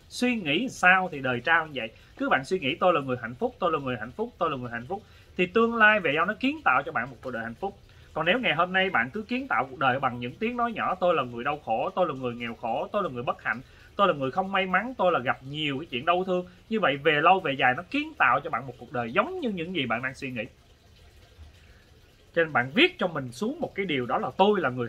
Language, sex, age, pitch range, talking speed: Vietnamese, male, 20-39, 130-210 Hz, 300 wpm